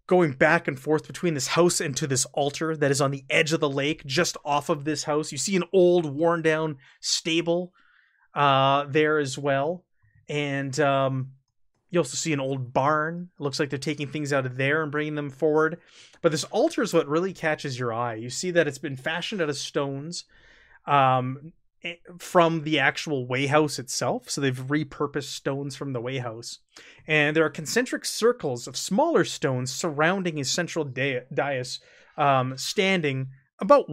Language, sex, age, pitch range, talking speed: English, male, 30-49, 135-170 Hz, 180 wpm